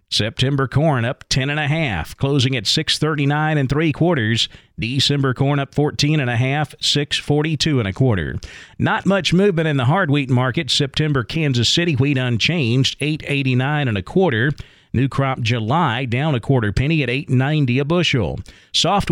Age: 40-59